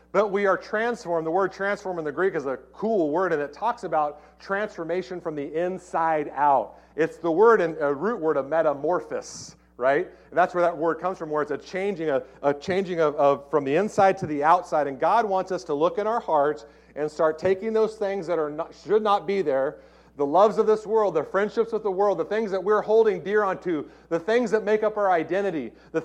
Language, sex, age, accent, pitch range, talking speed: English, male, 40-59, American, 125-195 Hz, 235 wpm